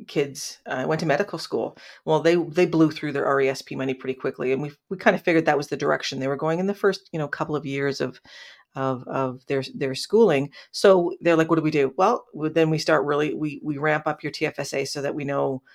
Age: 40-59